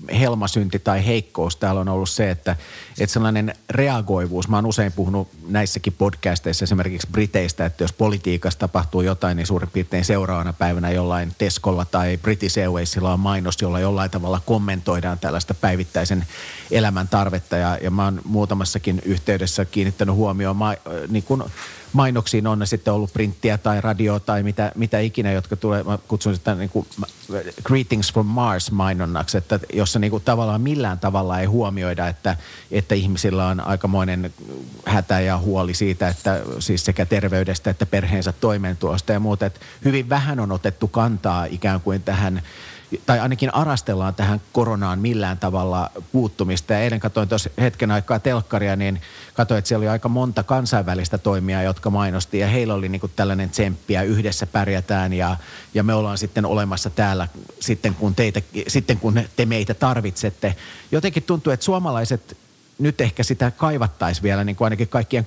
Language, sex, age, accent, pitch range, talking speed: Finnish, male, 40-59, native, 95-110 Hz, 160 wpm